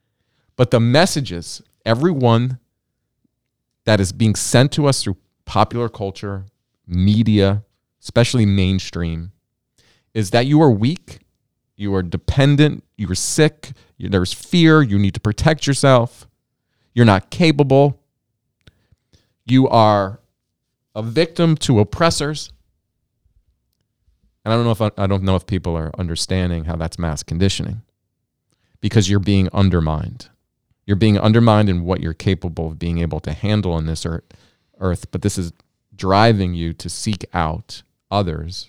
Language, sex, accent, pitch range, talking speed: English, male, American, 90-120 Hz, 140 wpm